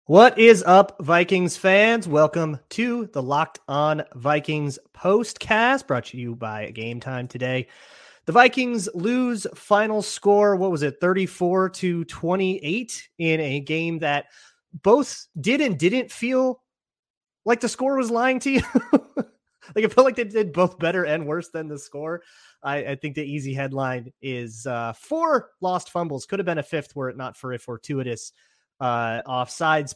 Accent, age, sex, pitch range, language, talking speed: American, 30-49, male, 135-205 Hz, English, 165 wpm